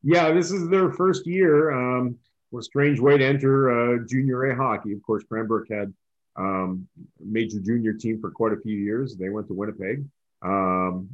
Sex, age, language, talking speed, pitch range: male, 30-49, English, 195 wpm, 95-125 Hz